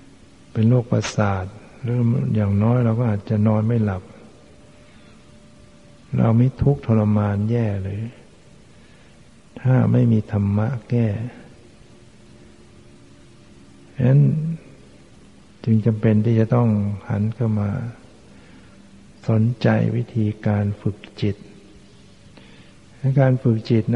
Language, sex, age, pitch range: Thai, male, 60-79, 105-120 Hz